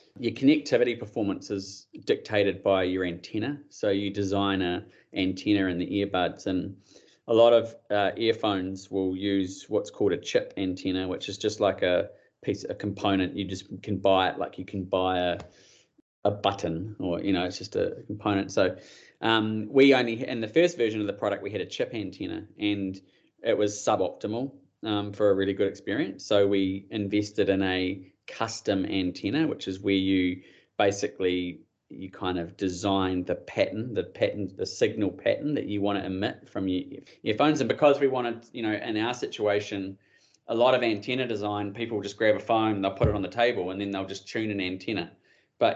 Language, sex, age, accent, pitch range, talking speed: English, male, 20-39, Australian, 95-110 Hz, 195 wpm